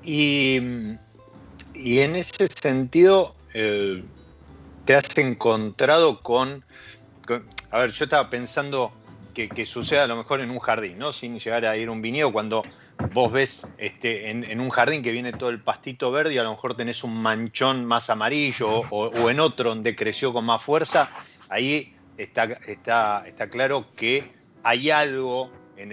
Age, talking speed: 30-49, 170 wpm